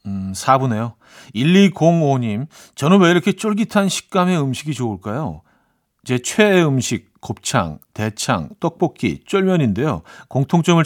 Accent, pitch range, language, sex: native, 110-170 Hz, Korean, male